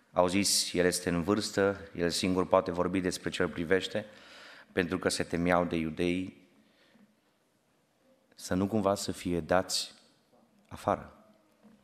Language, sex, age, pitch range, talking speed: Romanian, male, 30-49, 90-110 Hz, 130 wpm